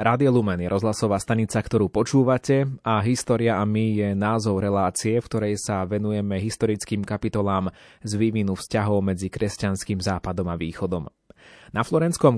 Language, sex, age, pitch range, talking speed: Slovak, male, 30-49, 105-130 Hz, 145 wpm